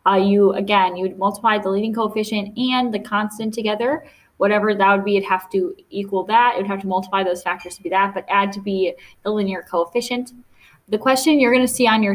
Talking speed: 235 wpm